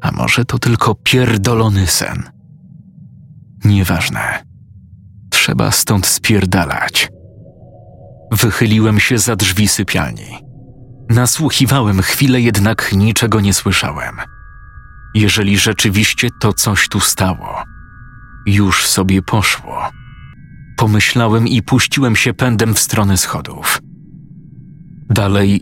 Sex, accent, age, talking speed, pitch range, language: male, native, 40-59, 90 wpm, 100-120 Hz, Polish